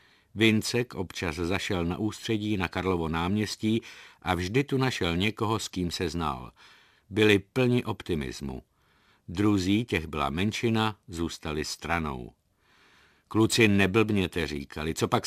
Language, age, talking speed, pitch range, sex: Czech, 50-69, 120 wpm, 85-115 Hz, male